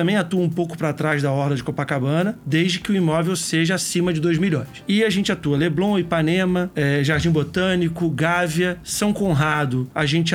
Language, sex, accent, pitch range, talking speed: Portuguese, male, Brazilian, 155-180 Hz, 185 wpm